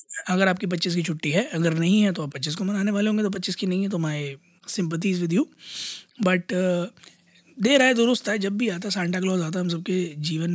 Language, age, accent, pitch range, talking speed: Hindi, 20-39, native, 170-200 Hz, 235 wpm